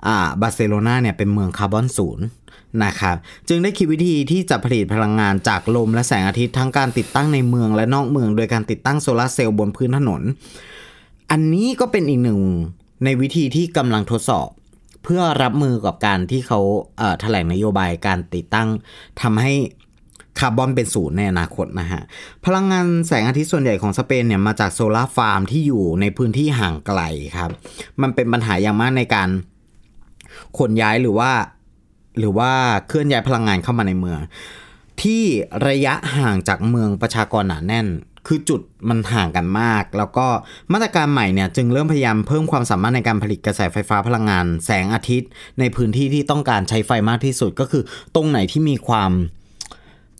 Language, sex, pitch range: Thai, male, 100-135 Hz